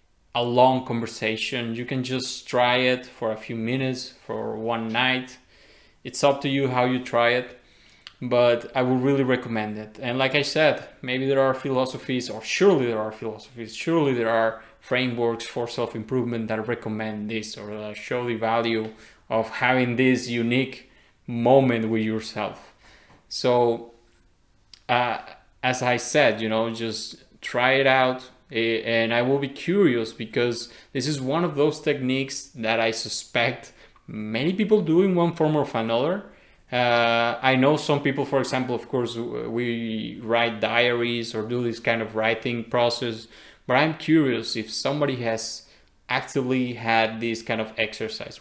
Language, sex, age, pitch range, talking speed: English, male, 20-39, 110-130 Hz, 155 wpm